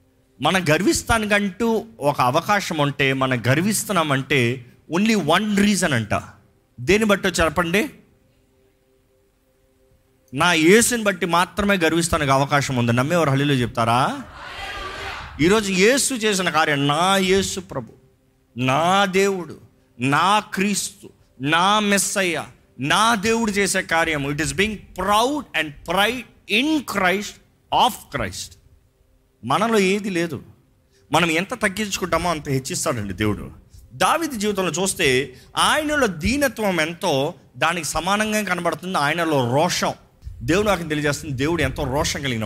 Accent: native